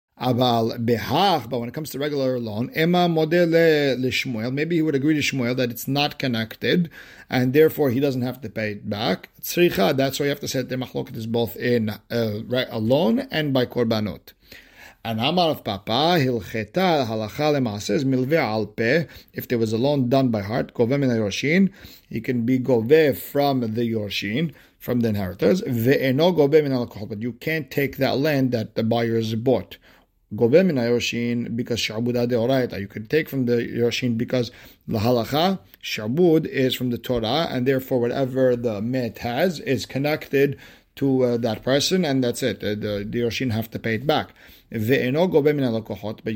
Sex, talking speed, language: male, 150 wpm, English